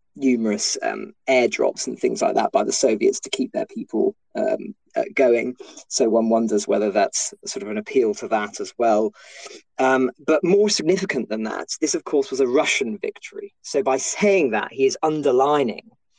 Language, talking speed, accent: English, 185 wpm, British